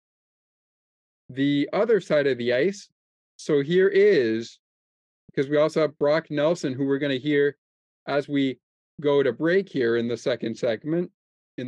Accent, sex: American, male